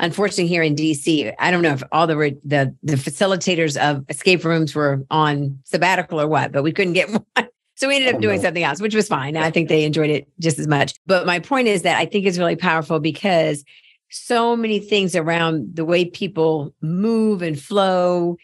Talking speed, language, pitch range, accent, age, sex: 210 wpm, English, 155-190 Hz, American, 50-69, female